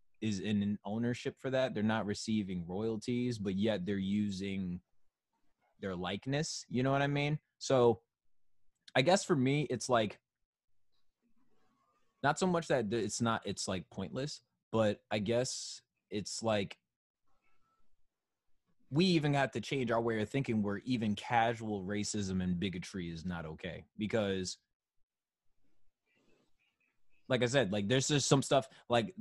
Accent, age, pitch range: American, 20-39, 100-140 Hz